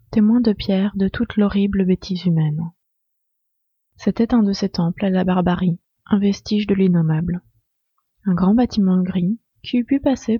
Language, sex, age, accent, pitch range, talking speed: French, female, 20-39, French, 175-210 Hz, 160 wpm